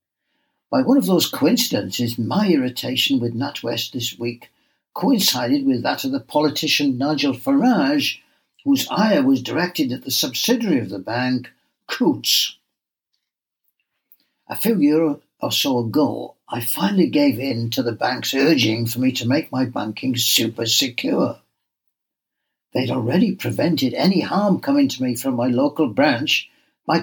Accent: British